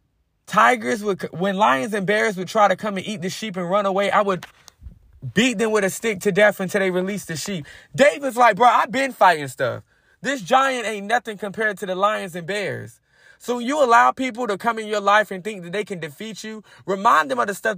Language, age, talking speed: English, 20-39, 235 wpm